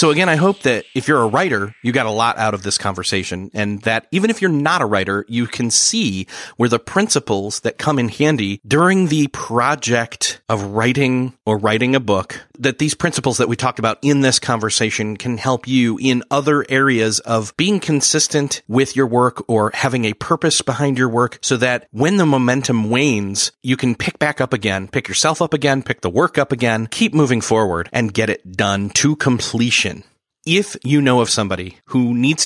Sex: male